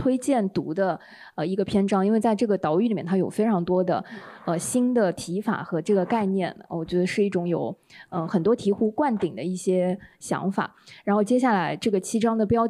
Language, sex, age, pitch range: Chinese, female, 20-39, 180-220 Hz